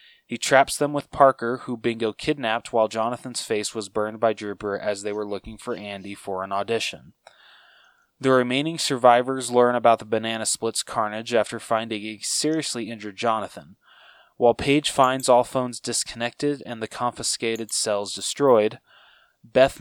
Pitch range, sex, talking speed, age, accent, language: 110-130 Hz, male, 155 wpm, 20-39, American, English